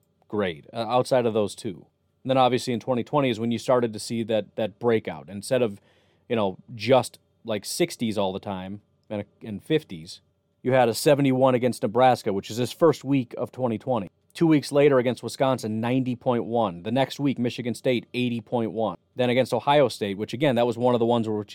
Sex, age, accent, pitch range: male, 30-49, American, 110-135 Hz